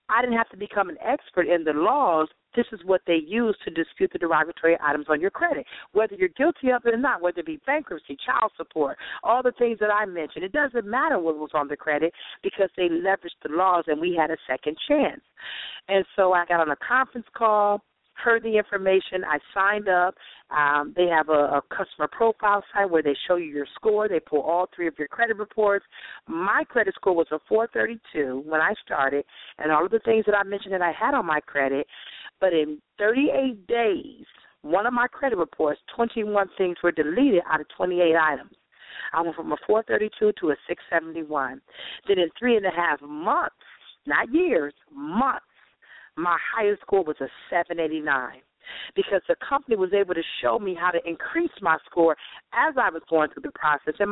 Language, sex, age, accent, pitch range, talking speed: English, female, 50-69, American, 155-225 Hz, 200 wpm